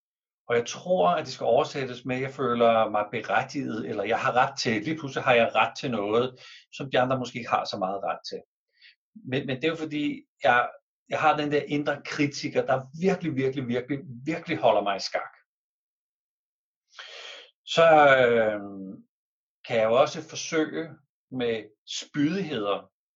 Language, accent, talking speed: Danish, native, 170 wpm